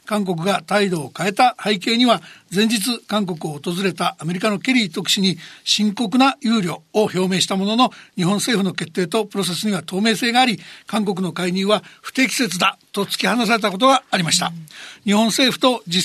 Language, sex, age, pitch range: Japanese, male, 60-79, 195-245 Hz